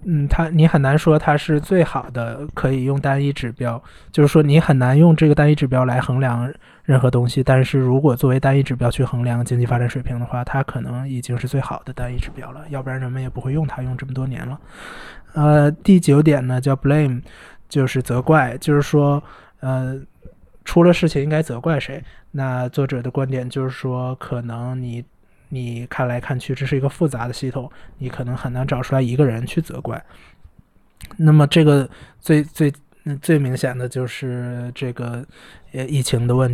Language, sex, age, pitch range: Chinese, male, 20-39, 125-140 Hz